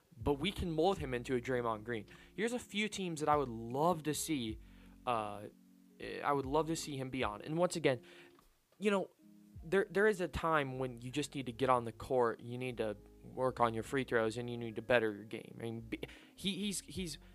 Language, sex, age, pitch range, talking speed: English, male, 20-39, 115-150 Hz, 230 wpm